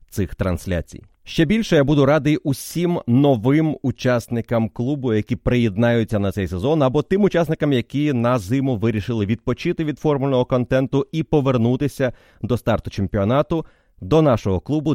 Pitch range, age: 105-140 Hz, 30-49